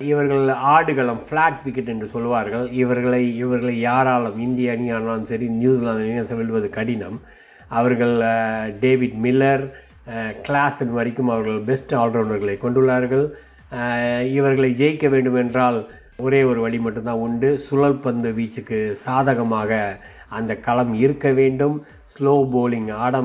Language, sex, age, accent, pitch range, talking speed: Tamil, male, 30-49, native, 115-130 Hz, 115 wpm